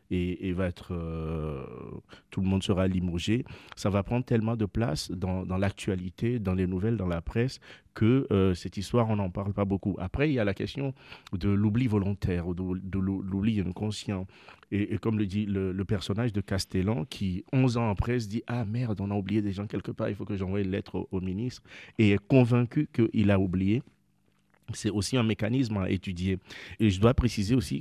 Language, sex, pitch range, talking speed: French, male, 95-115 Hz, 220 wpm